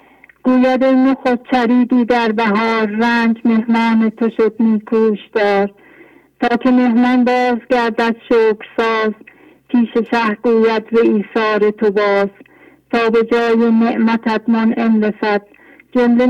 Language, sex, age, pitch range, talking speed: English, female, 50-69, 220-245 Hz, 110 wpm